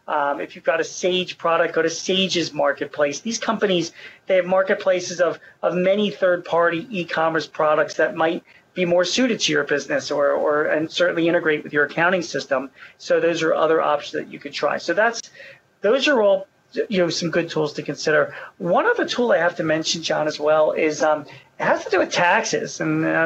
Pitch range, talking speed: 150-190 Hz, 205 wpm